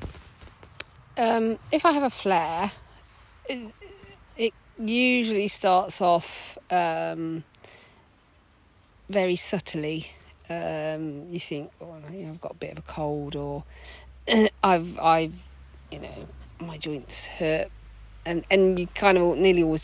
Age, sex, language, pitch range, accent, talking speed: 40-59, female, English, 145-180 Hz, British, 125 wpm